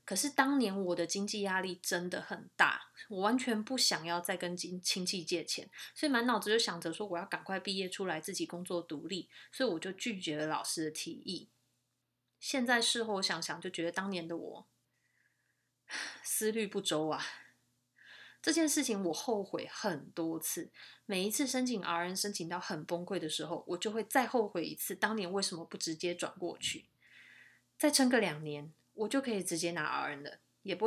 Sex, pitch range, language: female, 170-225 Hz, Chinese